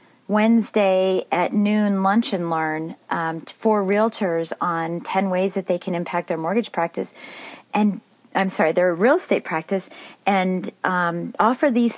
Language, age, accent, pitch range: English, 40-59, American, 165-220 Hz